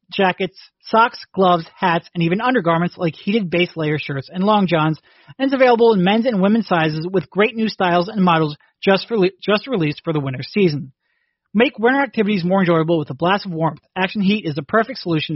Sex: male